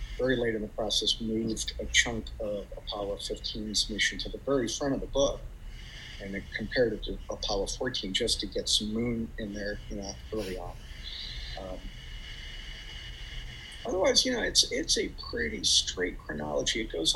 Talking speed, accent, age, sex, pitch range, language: 170 wpm, American, 50-69, male, 75-115 Hz, English